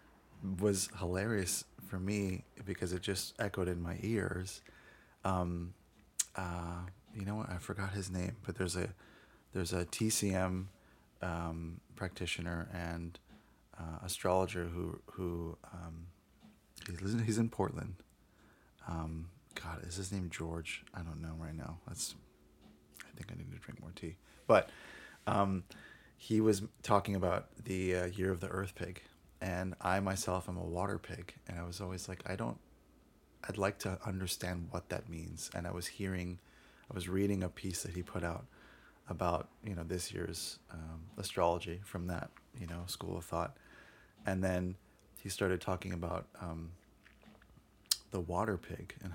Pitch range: 85-100 Hz